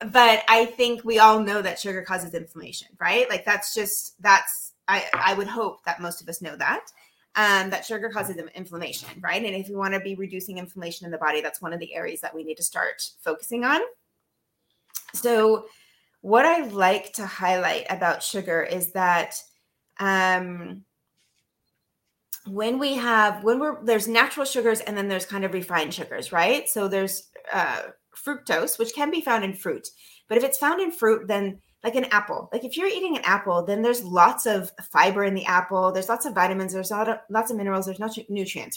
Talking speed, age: 195 wpm, 20-39